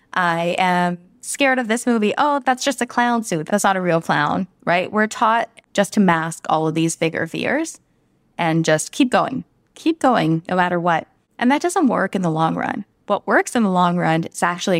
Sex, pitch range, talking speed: female, 165-220 Hz, 215 wpm